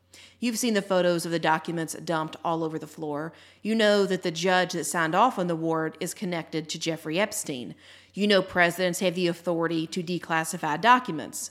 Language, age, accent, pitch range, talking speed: English, 40-59, American, 160-215 Hz, 195 wpm